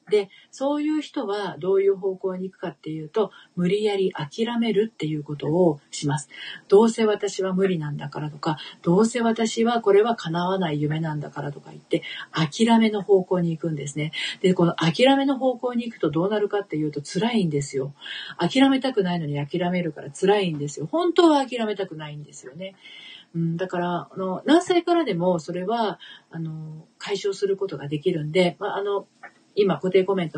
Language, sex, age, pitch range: Japanese, female, 40-59, 155-210 Hz